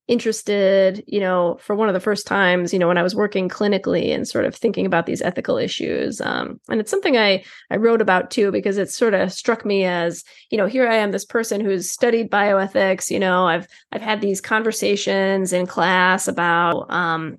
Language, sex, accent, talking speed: English, female, American, 210 wpm